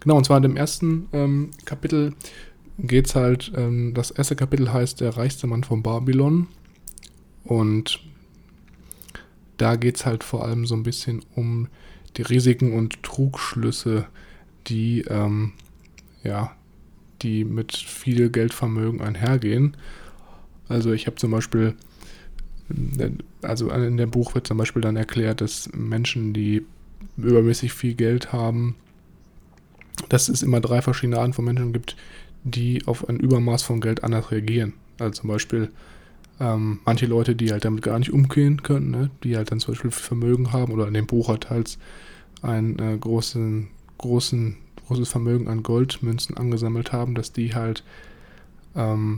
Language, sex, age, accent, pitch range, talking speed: German, male, 20-39, German, 115-130 Hz, 150 wpm